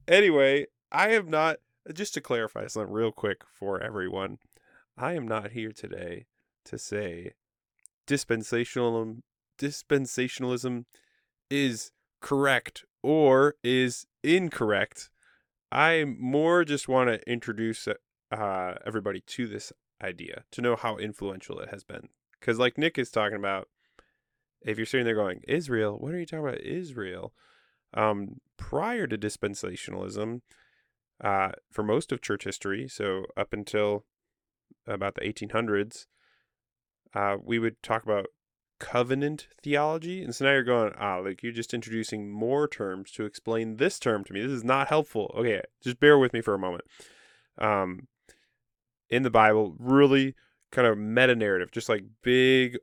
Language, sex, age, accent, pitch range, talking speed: English, male, 20-39, American, 105-135 Hz, 145 wpm